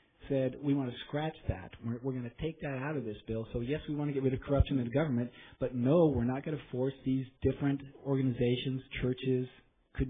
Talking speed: 240 wpm